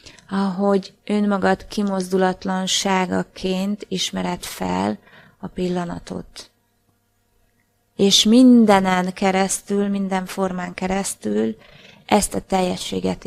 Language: Hungarian